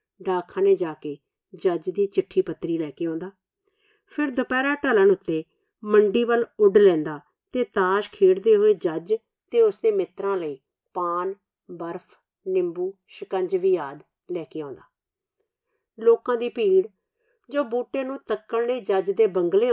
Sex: female